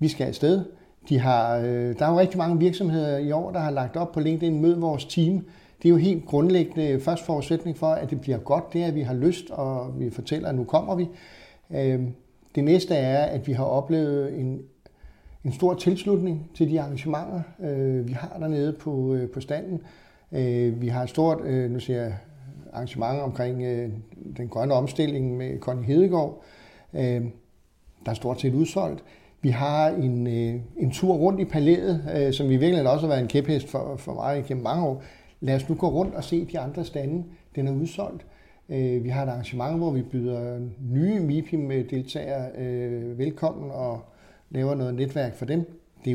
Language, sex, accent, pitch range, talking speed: Danish, male, native, 130-165 Hz, 180 wpm